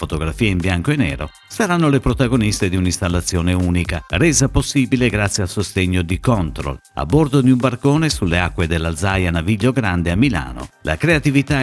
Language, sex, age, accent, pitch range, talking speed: Italian, male, 50-69, native, 85-130 Hz, 165 wpm